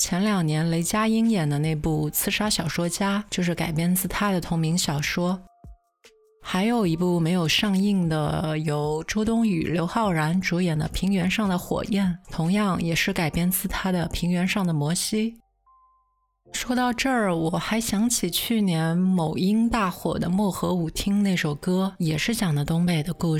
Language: Chinese